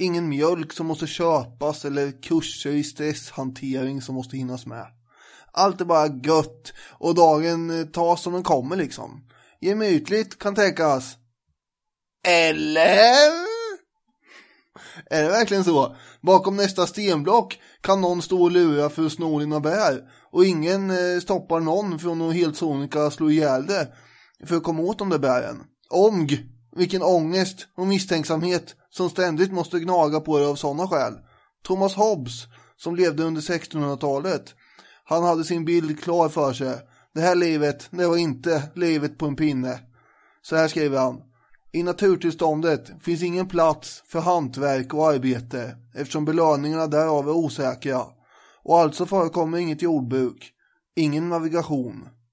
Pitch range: 145-175 Hz